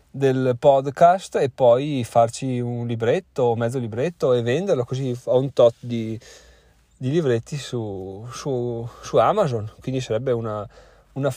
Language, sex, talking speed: Italian, male, 135 wpm